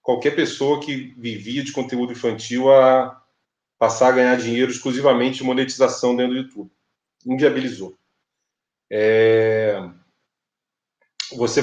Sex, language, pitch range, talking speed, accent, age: male, Portuguese, 120-145 Hz, 105 wpm, Brazilian, 30-49